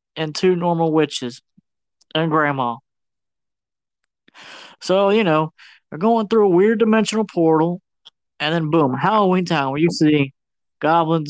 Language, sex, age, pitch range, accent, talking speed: English, male, 20-39, 145-200 Hz, American, 135 wpm